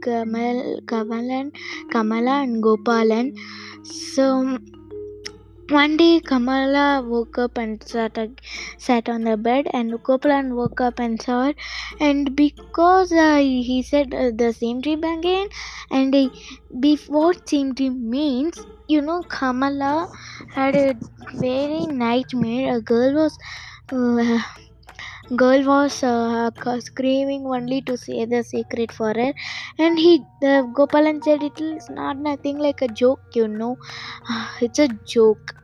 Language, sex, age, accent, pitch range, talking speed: English, female, 20-39, Indian, 235-285 Hz, 130 wpm